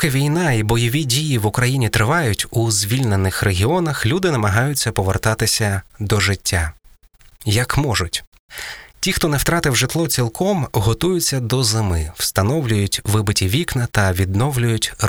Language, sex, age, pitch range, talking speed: Ukrainian, male, 20-39, 105-130 Hz, 125 wpm